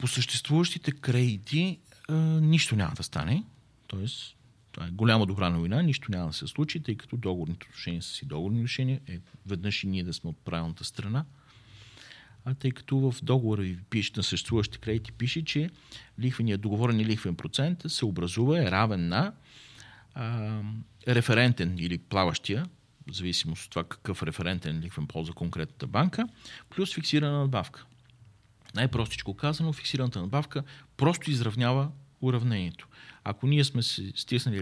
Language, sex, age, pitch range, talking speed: Bulgarian, male, 40-59, 100-140 Hz, 140 wpm